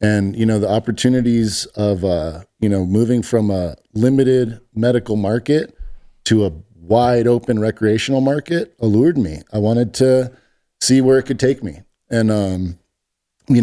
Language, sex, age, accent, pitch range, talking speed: English, male, 40-59, American, 100-125 Hz, 155 wpm